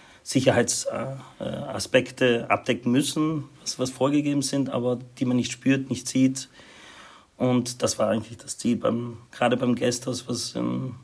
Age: 40-59